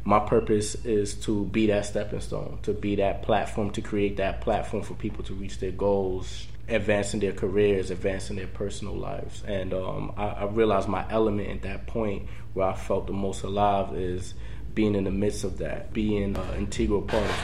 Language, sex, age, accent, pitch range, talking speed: English, male, 20-39, American, 95-110 Hz, 200 wpm